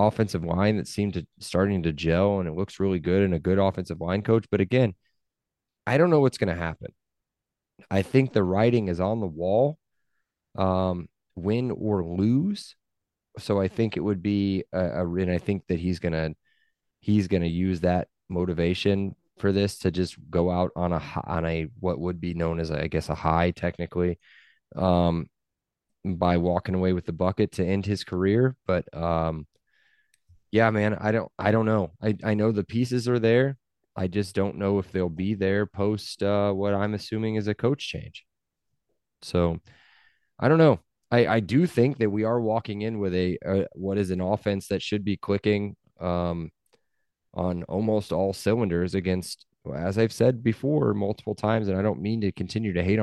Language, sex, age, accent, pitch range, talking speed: English, male, 20-39, American, 90-110 Hz, 190 wpm